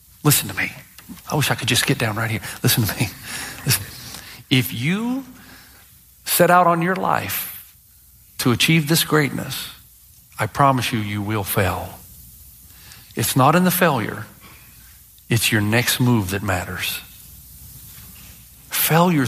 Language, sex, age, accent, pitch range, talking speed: English, male, 50-69, American, 115-160 Hz, 135 wpm